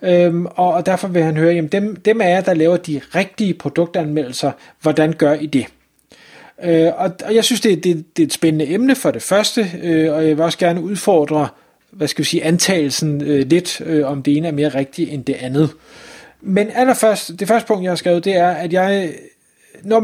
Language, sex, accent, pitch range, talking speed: Danish, male, native, 155-200 Hz, 185 wpm